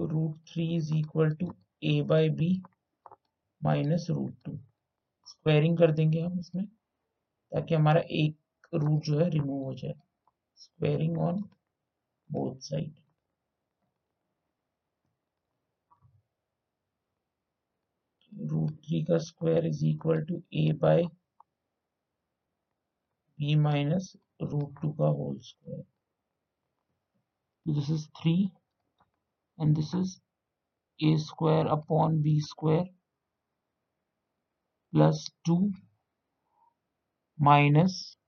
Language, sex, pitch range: Hindi, male, 150-170 Hz